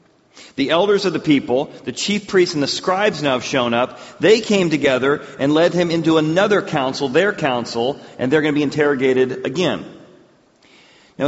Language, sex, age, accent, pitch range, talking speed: English, male, 40-59, American, 130-185 Hz, 180 wpm